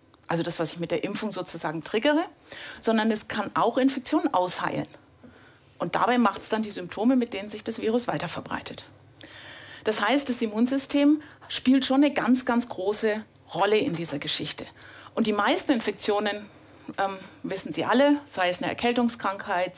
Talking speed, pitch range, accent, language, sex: 165 wpm, 185-255 Hz, German, German, female